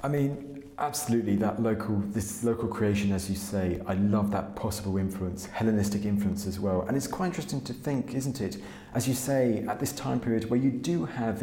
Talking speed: 205 wpm